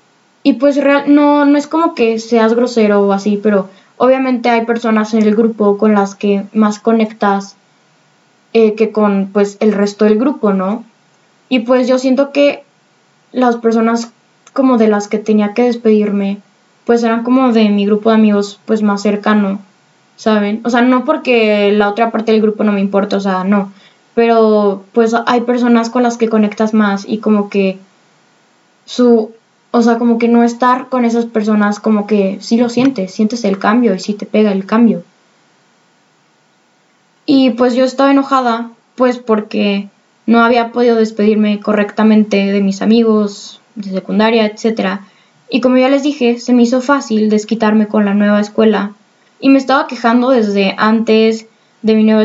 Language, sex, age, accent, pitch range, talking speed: Spanish, female, 10-29, Mexican, 205-240 Hz, 170 wpm